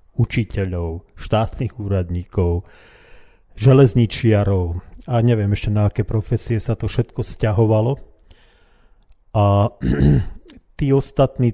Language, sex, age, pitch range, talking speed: Slovak, male, 40-59, 95-115 Hz, 90 wpm